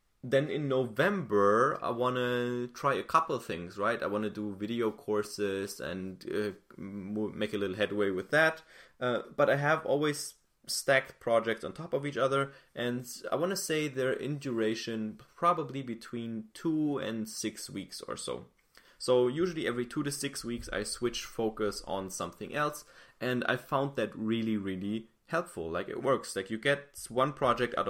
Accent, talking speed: German, 175 wpm